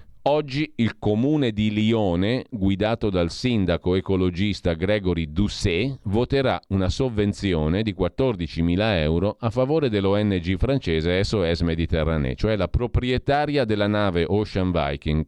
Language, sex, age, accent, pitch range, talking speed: Italian, male, 40-59, native, 85-115 Hz, 120 wpm